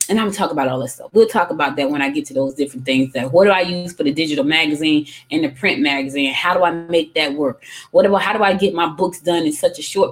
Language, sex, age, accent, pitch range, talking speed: English, female, 20-39, American, 150-215 Hz, 300 wpm